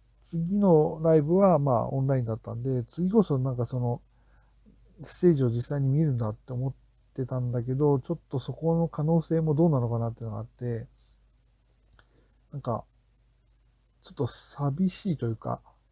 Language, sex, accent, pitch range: Japanese, male, native, 120-155 Hz